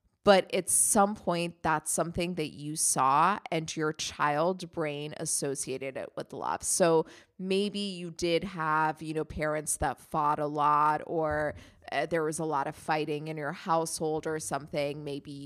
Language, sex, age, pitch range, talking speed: English, female, 20-39, 155-200 Hz, 165 wpm